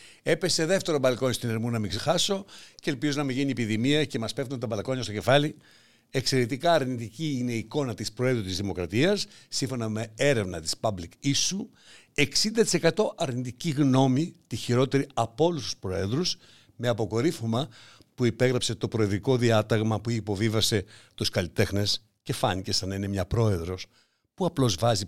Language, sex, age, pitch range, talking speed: Greek, male, 60-79, 110-140 Hz, 160 wpm